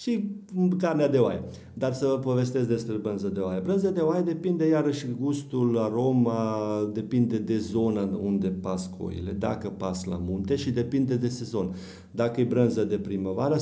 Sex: male